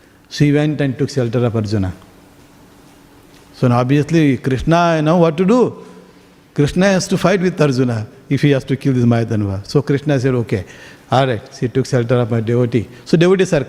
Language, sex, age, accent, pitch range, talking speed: English, male, 50-69, Indian, 130-155 Hz, 195 wpm